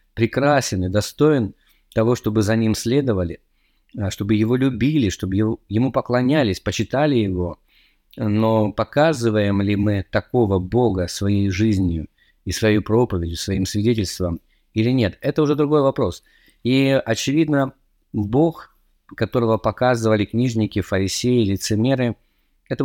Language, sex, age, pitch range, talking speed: Russian, male, 20-39, 95-120 Hz, 115 wpm